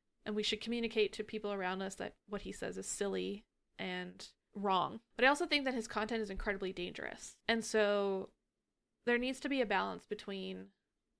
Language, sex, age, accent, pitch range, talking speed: English, female, 20-39, American, 195-220 Hz, 190 wpm